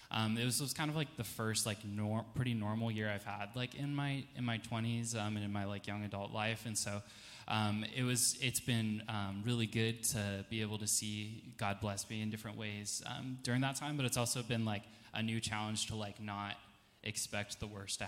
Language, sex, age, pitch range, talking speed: English, male, 10-29, 105-120 Hz, 230 wpm